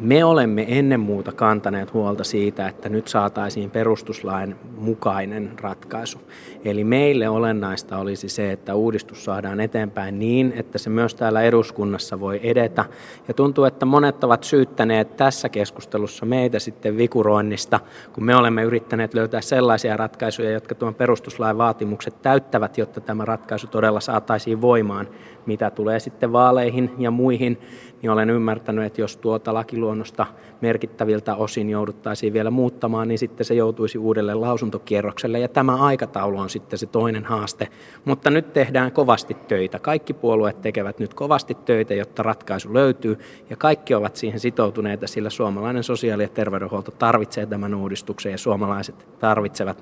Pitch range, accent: 105-120 Hz, native